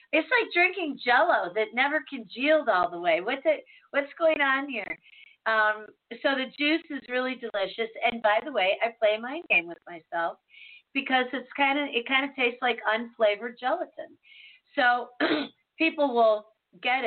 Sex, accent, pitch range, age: female, American, 230-325 Hz, 40-59